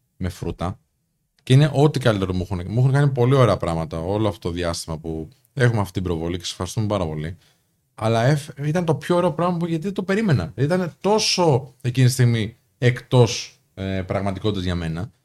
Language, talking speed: Greek, 180 wpm